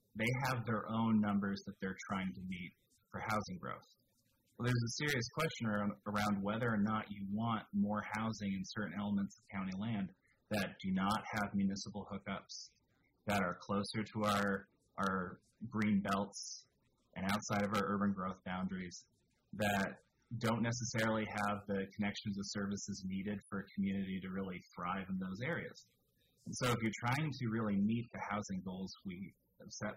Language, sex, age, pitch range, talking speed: English, male, 30-49, 95-110 Hz, 170 wpm